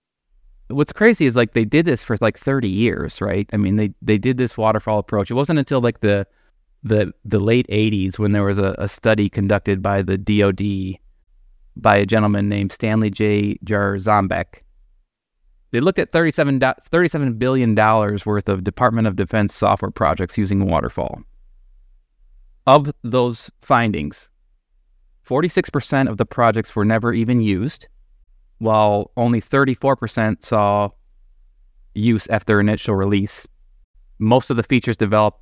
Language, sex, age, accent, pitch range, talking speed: English, male, 30-49, American, 100-115 Hz, 145 wpm